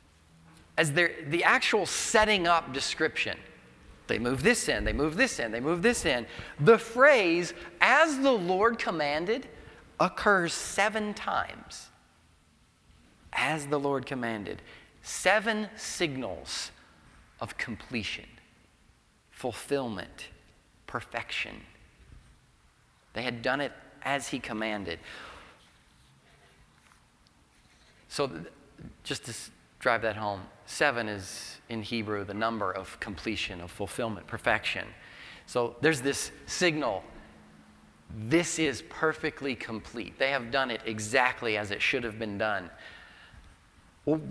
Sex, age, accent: male, 30-49, American